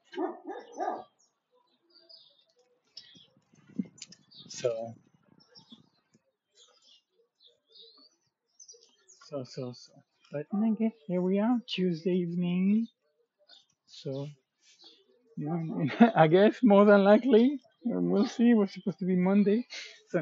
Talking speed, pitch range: 75 wpm, 155-230 Hz